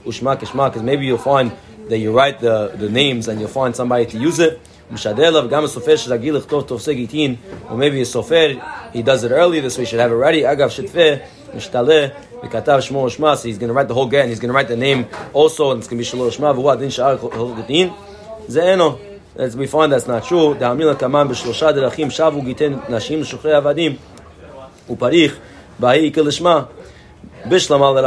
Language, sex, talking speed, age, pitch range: English, male, 115 wpm, 30-49, 125-155 Hz